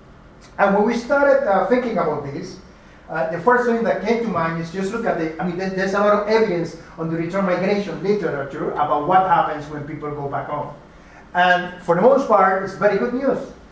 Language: English